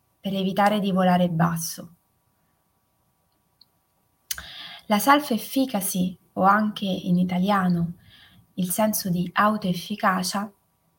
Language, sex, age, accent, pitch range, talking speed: Italian, female, 20-39, native, 180-220 Hz, 80 wpm